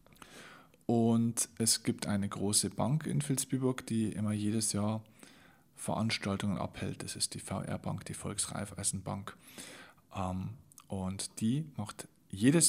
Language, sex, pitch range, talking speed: German, male, 105-130 Hz, 115 wpm